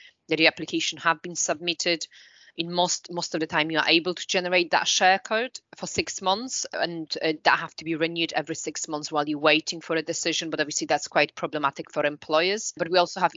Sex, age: female, 20-39